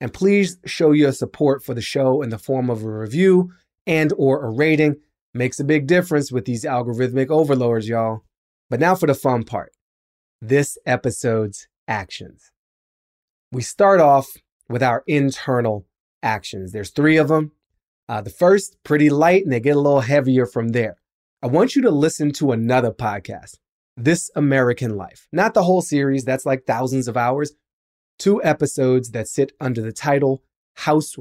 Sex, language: male, English